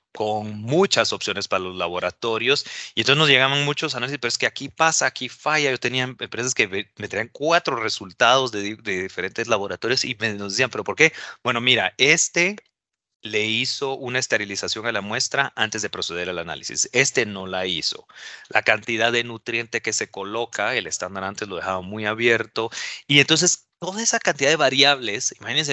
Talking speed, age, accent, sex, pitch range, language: 180 wpm, 30-49, Mexican, male, 105-135 Hz, Portuguese